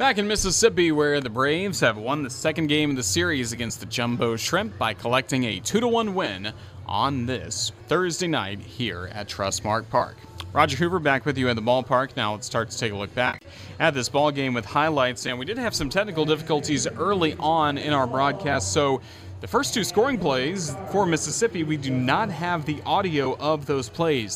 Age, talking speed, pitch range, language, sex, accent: 30-49, 205 wpm, 115-160 Hz, English, male, American